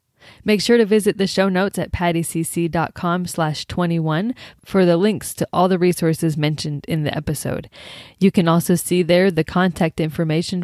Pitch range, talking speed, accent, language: 160-200 Hz, 170 wpm, American, English